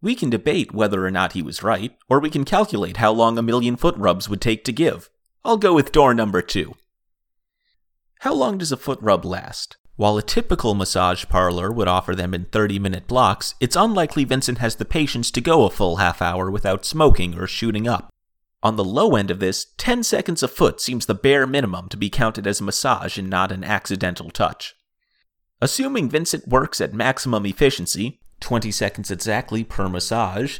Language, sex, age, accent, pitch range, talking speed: English, male, 30-49, American, 95-135 Hz, 195 wpm